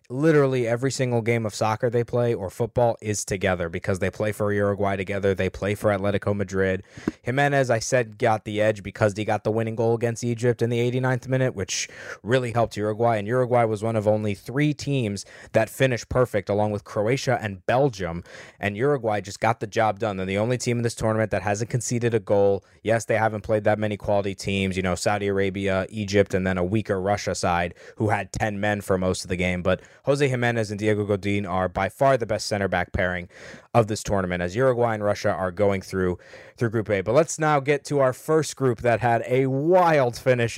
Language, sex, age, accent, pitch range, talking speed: English, male, 20-39, American, 100-130 Hz, 220 wpm